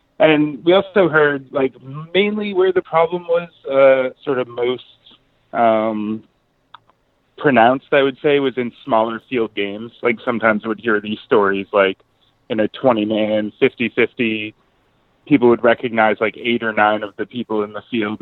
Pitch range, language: 105-125 Hz, English